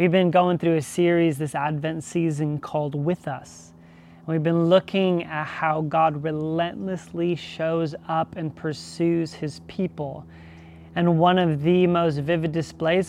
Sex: male